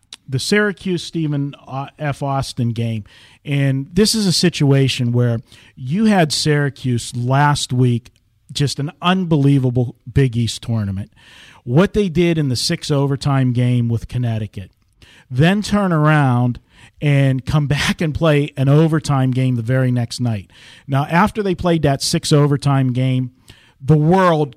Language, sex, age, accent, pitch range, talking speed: English, male, 40-59, American, 125-155 Hz, 135 wpm